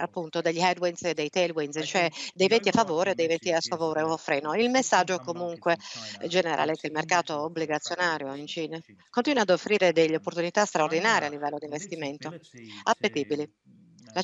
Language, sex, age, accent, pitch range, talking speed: English, female, 50-69, Italian, 160-185 Hz, 175 wpm